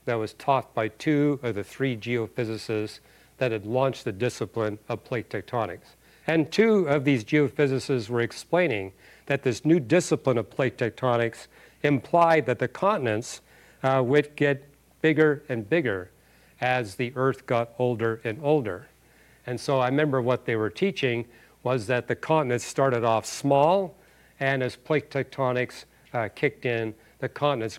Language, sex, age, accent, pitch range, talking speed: English, male, 50-69, American, 120-145 Hz, 155 wpm